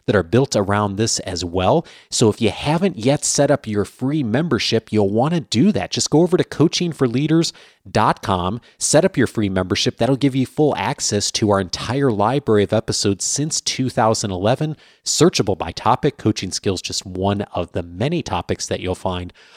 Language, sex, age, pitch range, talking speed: English, male, 30-49, 100-135 Hz, 180 wpm